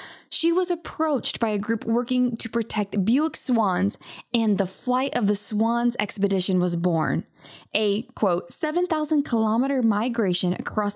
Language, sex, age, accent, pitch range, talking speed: English, female, 20-39, American, 210-290 Hz, 140 wpm